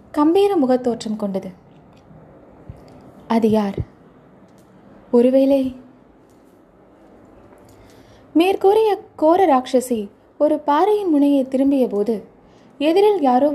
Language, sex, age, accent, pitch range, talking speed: Tamil, female, 20-39, native, 220-305 Hz, 70 wpm